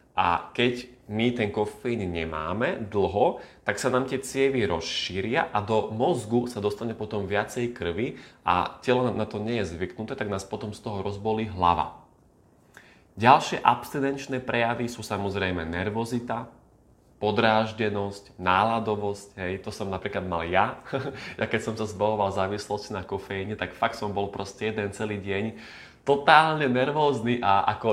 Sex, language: male, Slovak